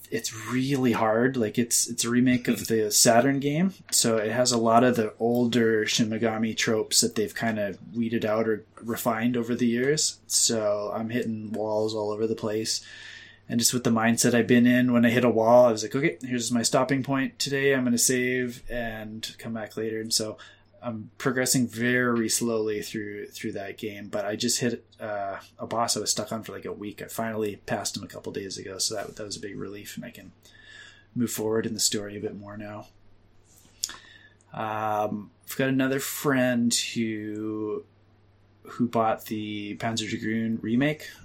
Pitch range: 105-120 Hz